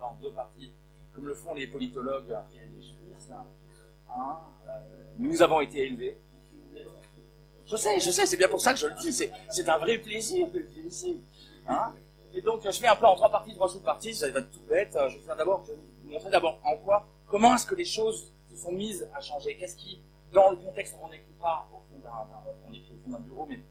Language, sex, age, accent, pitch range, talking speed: French, male, 30-49, French, 150-215 Hz, 215 wpm